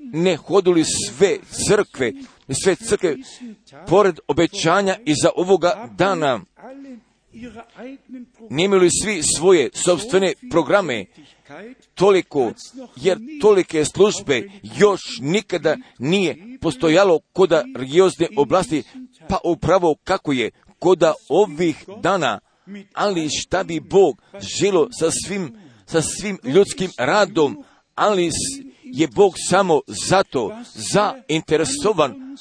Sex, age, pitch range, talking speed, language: male, 50-69, 165-230 Hz, 95 wpm, Croatian